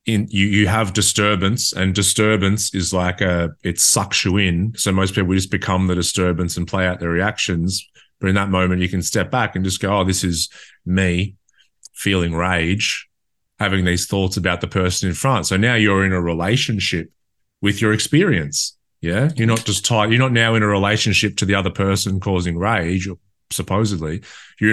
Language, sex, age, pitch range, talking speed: English, male, 30-49, 95-115 Hz, 195 wpm